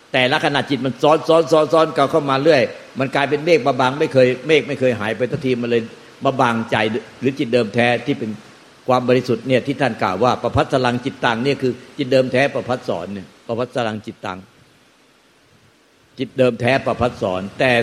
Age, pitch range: 60-79, 115-135 Hz